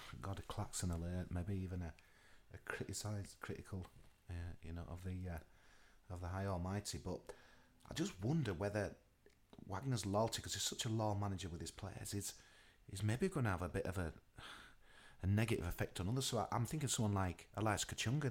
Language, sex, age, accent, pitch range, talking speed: English, male, 30-49, British, 90-115 Hz, 195 wpm